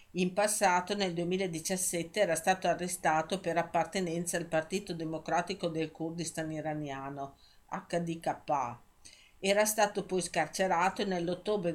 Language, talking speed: Italian, 110 wpm